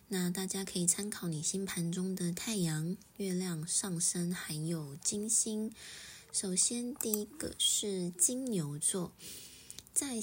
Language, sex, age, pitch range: Chinese, female, 20-39, 165-205 Hz